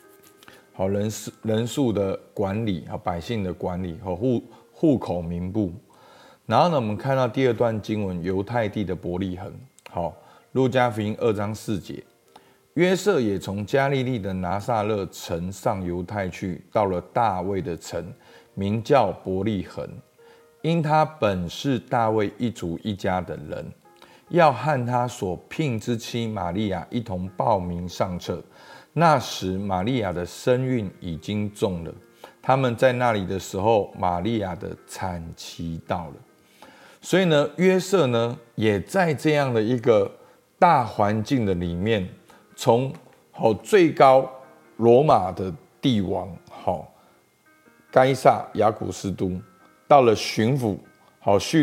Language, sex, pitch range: Chinese, male, 95-125 Hz